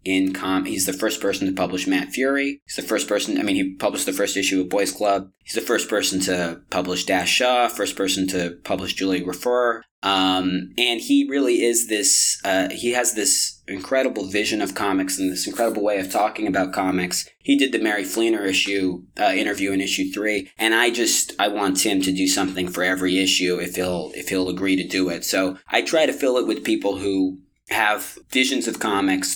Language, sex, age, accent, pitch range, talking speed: English, male, 20-39, American, 90-100 Hz, 215 wpm